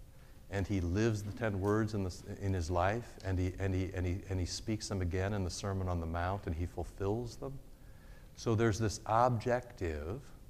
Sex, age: male, 60-79